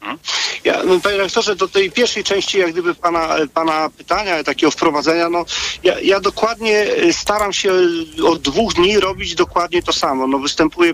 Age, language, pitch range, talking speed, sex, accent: 40-59, Polish, 140-200 Hz, 160 wpm, male, native